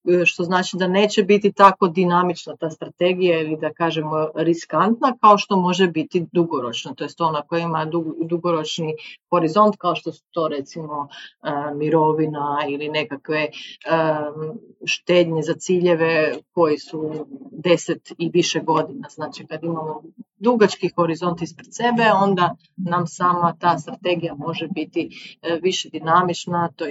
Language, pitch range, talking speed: Croatian, 160-180 Hz, 130 wpm